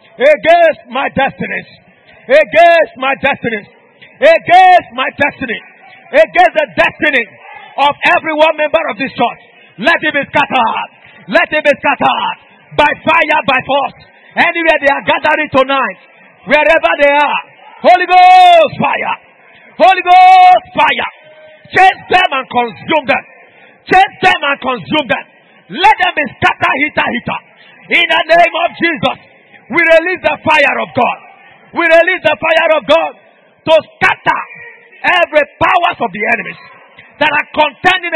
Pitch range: 280-340 Hz